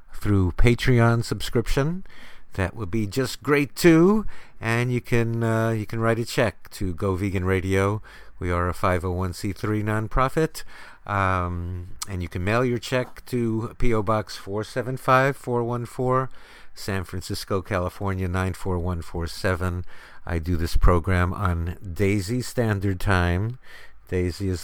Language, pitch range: English, 90-125 Hz